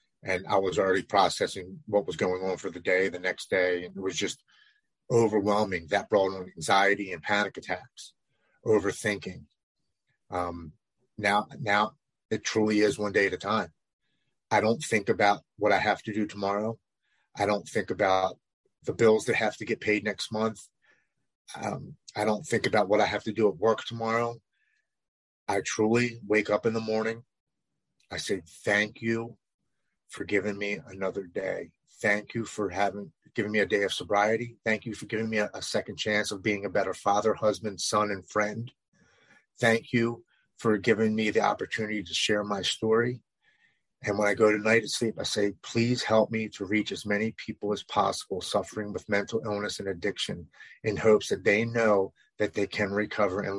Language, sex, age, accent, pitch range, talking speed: English, male, 30-49, American, 100-110 Hz, 185 wpm